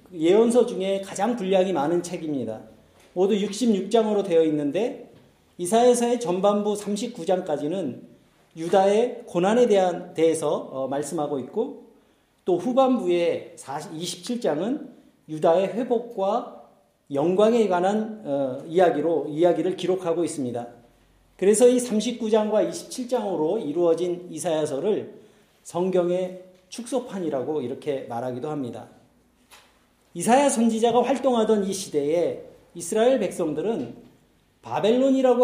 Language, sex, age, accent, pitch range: Korean, male, 40-59, native, 175-245 Hz